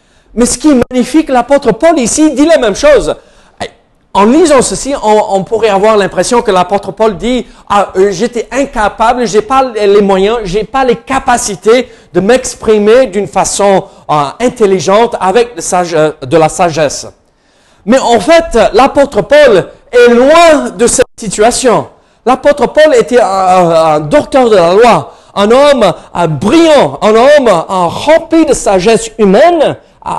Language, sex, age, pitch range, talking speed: French, male, 50-69, 190-265 Hz, 165 wpm